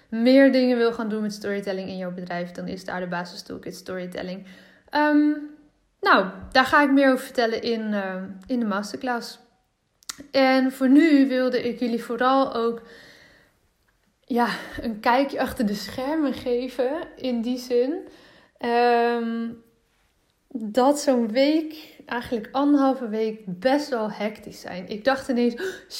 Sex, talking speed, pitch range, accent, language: female, 135 wpm, 220-265 Hz, Dutch, Dutch